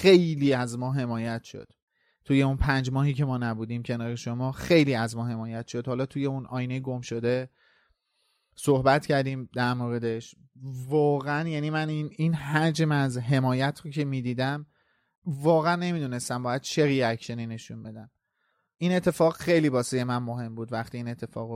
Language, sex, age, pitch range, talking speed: Persian, male, 30-49, 125-150 Hz, 165 wpm